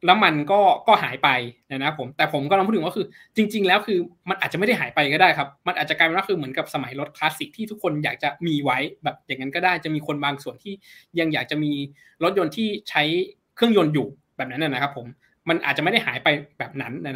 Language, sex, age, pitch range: Thai, male, 20-39, 140-190 Hz